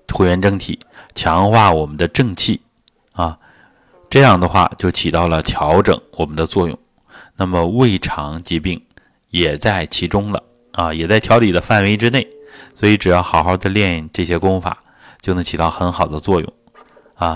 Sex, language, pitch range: male, Chinese, 85-110 Hz